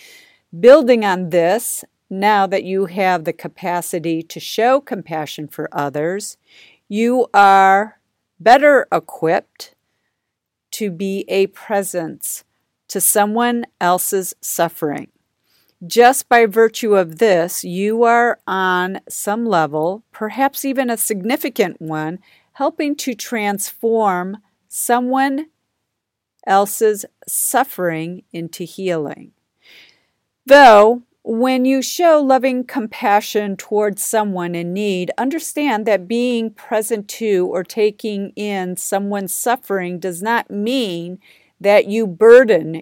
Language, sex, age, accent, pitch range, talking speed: English, female, 50-69, American, 180-240 Hz, 105 wpm